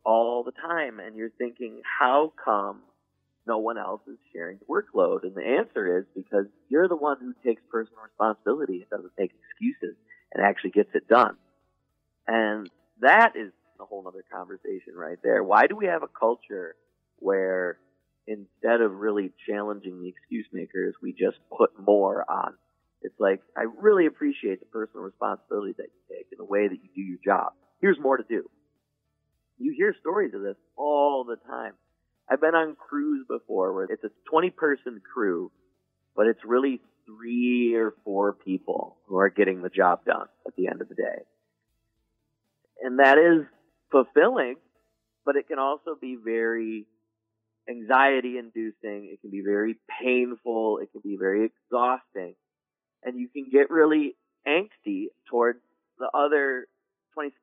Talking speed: 160 wpm